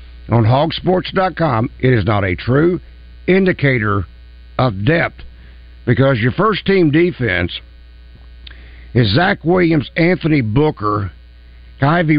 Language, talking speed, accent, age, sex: English, 100 wpm, American, 60-79, male